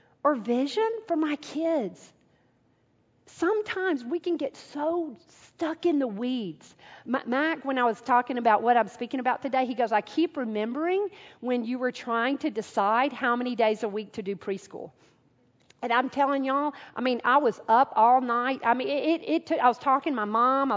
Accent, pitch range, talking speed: American, 240-325 Hz, 195 wpm